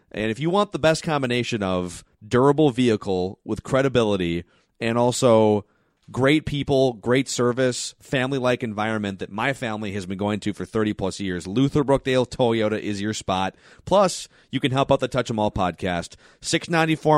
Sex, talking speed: male, 160 wpm